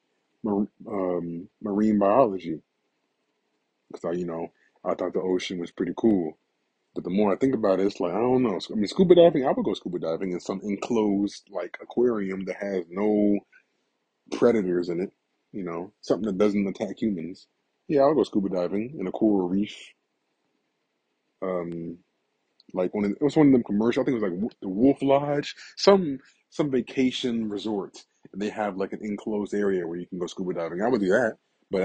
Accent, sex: American, male